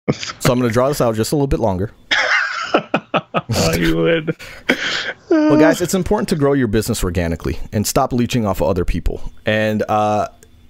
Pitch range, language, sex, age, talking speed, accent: 95-120 Hz, English, male, 30-49, 170 wpm, American